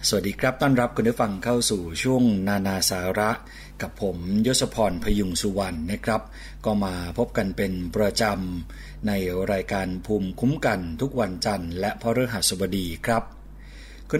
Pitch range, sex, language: 95-115 Hz, male, Thai